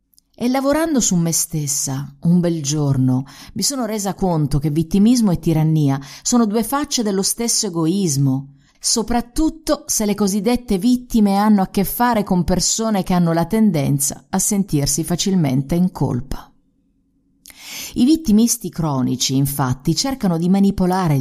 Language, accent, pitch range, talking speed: English, Italian, 155-230 Hz, 140 wpm